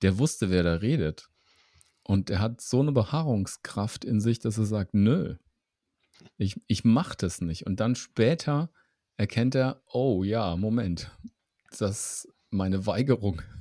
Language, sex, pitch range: German, male, 90-115 Hz